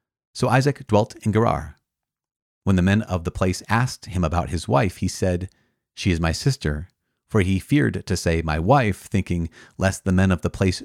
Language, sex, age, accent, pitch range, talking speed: English, male, 30-49, American, 90-120 Hz, 200 wpm